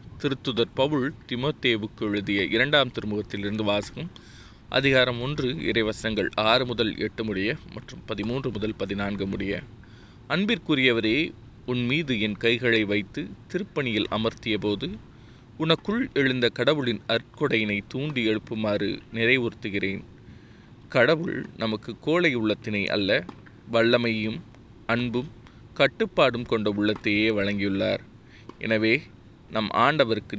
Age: 20-39